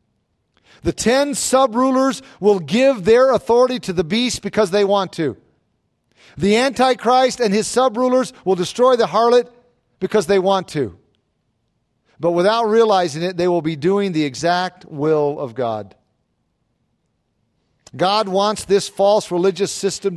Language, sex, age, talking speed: English, male, 50-69, 135 wpm